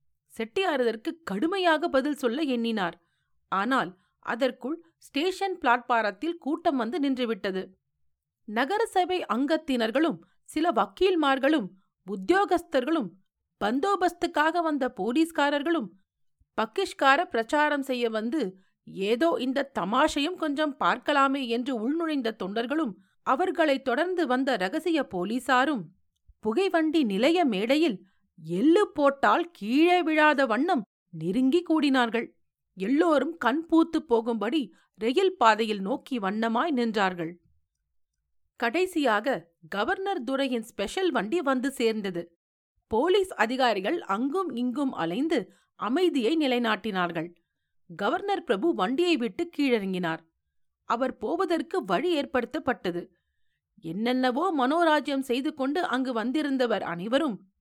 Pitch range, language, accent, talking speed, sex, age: 210-320 Hz, Tamil, native, 90 wpm, female, 40-59